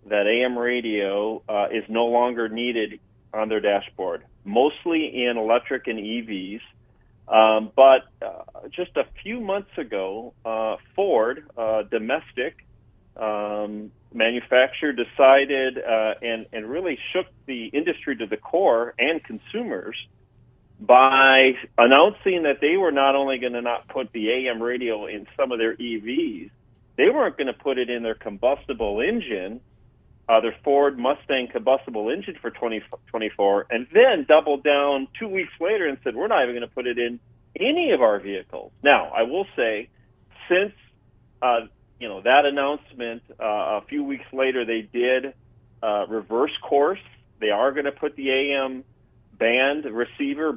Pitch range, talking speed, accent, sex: 115-140 Hz, 155 wpm, American, male